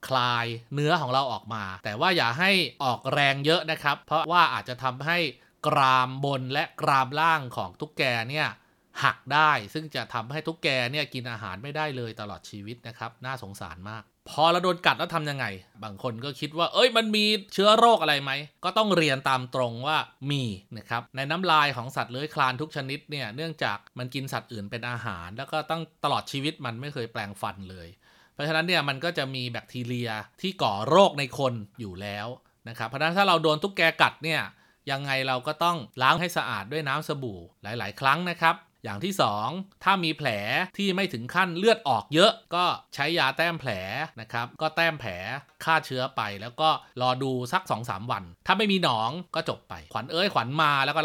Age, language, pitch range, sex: 30-49, Thai, 120-160 Hz, male